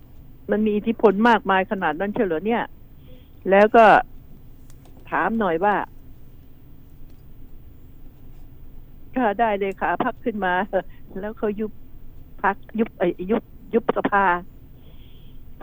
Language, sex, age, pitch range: Thai, female, 60-79, 205-240 Hz